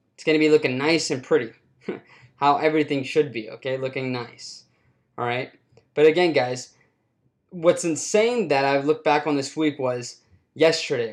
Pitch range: 135-170 Hz